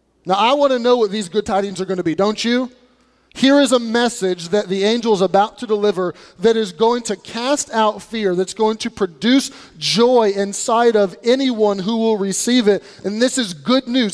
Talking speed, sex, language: 210 wpm, male, English